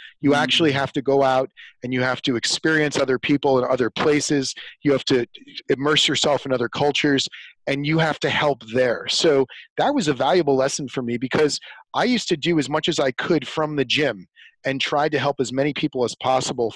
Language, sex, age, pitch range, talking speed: English, male, 30-49, 130-150 Hz, 215 wpm